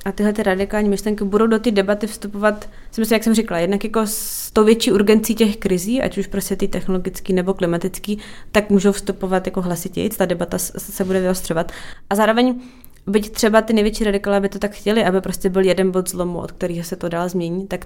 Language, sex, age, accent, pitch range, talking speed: Czech, female, 20-39, native, 185-215 Hz, 215 wpm